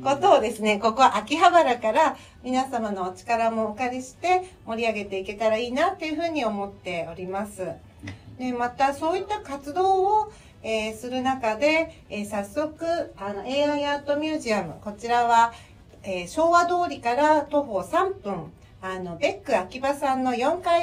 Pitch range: 215-290 Hz